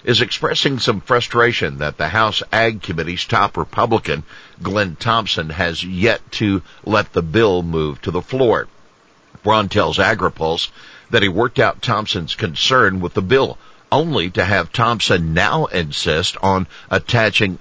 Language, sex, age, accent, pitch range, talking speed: English, male, 60-79, American, 85-110 Hz, 145 wpm